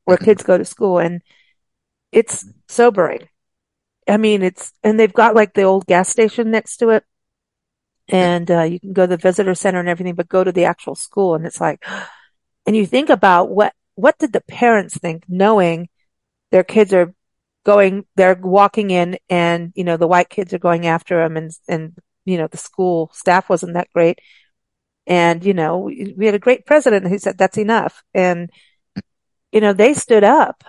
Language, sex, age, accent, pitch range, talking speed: English, female, 40-59, American, 180-220 Hz, 190 wpm